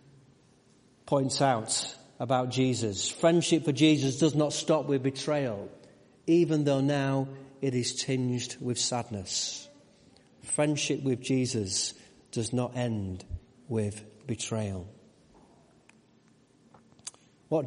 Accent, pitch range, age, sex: British, 115-135 Hz, 40-59, male